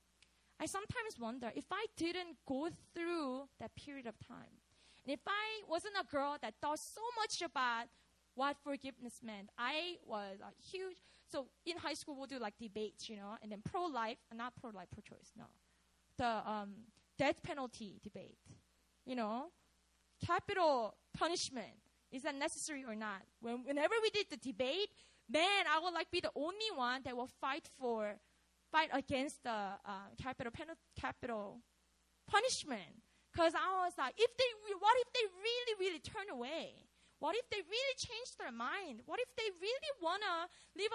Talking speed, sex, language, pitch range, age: 170 wpm, female, English, 240-380 Hz, 20-39